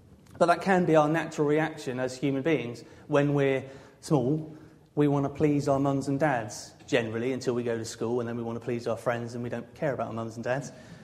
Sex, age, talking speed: male, 30-49, 240 wpm